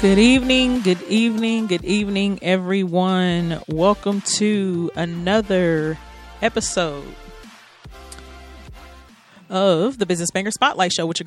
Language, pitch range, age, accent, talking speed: English, 180-235 Hz, 30-49, American, 100 wpm